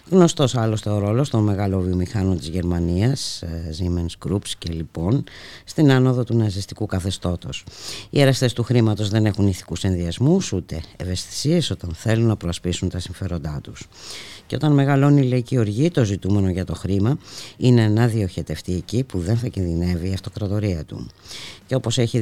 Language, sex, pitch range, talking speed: Greek, female, 90-115 Hz, 160 wpm